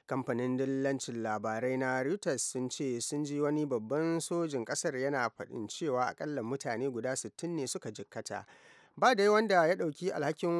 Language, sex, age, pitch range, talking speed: English, male, 30-49, 125-165 Hz, 155 wpm